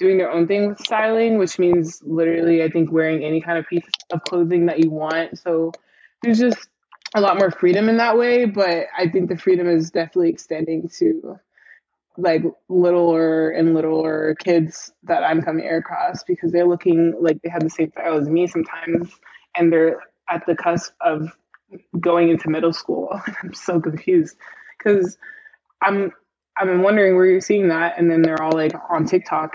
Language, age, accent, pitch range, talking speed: English, 20-39, American, 160-185 Hz, 180 wpm